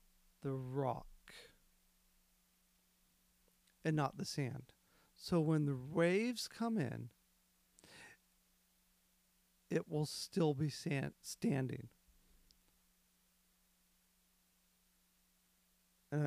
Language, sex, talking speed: English, male, 70 wpm